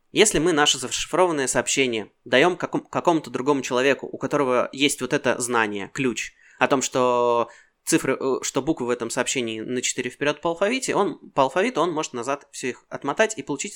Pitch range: 125-175 Hz